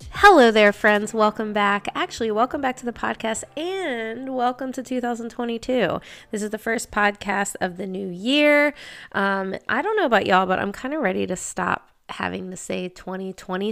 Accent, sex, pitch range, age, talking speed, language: American, female, 185-240 Hz, 20-39, 180 wpm, English